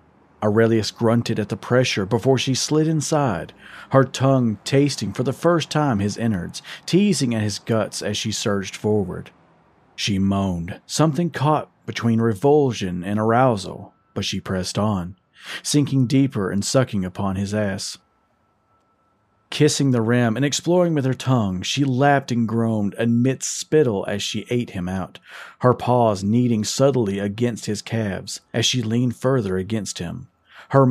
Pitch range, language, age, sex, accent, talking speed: 100-130 Hz, English, 40-59, male, American, 150 wpm